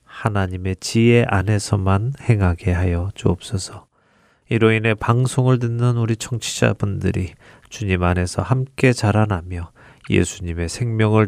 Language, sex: Korean, male